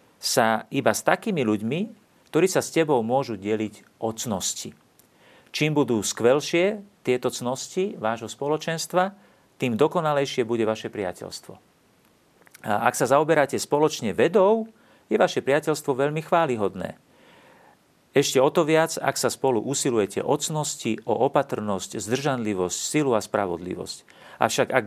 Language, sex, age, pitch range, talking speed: Slovak, male, 40-59, 105-140 Hz, 125 wpm